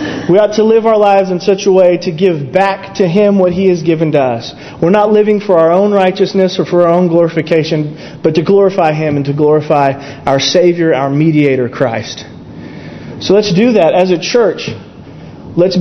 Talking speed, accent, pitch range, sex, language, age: 200 wpm, American, 170-225 Hz, male, English, 30-49